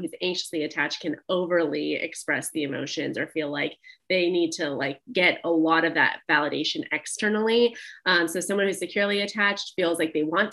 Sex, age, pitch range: female, 30-49, 160-200 Hz